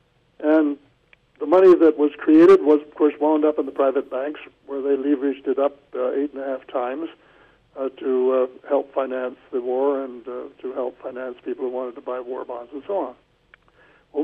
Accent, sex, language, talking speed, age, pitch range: American, male, English, 205 wpm, 60-79, 140-185 Hz